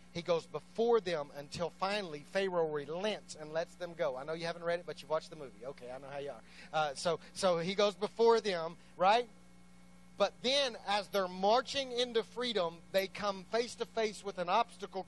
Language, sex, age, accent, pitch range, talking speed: English, male, 40-59, American, 150-215 Hz, 205 wpm